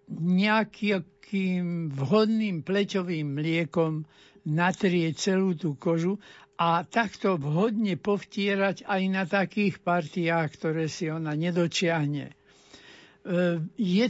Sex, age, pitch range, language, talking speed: male, 60-79, 170-205 Hz, Slovak, 90 wpm